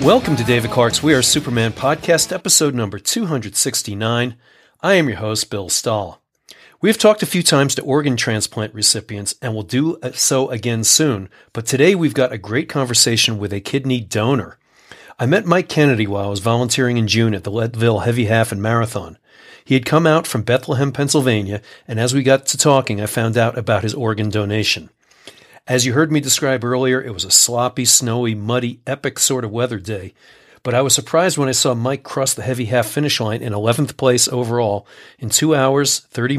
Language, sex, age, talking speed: English, male, 40-59, 195 wpm